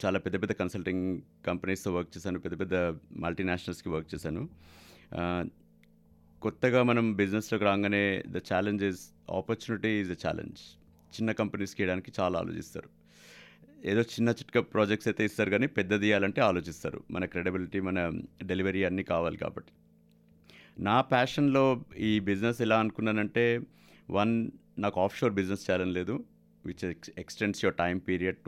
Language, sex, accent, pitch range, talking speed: Telugu, male, native, 90-110 Hz, 130 wpm